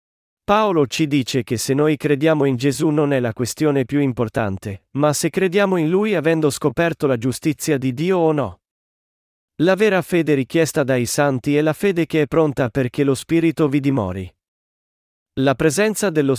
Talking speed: 175 wpm